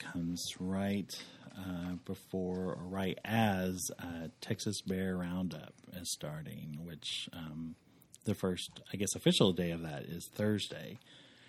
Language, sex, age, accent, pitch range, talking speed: English, male, 40-59, American, 85-105 Hz, 130 wpm